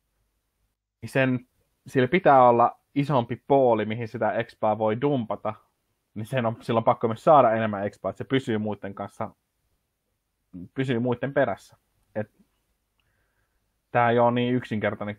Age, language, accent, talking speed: 20-39, Finnish, native, 125 wpm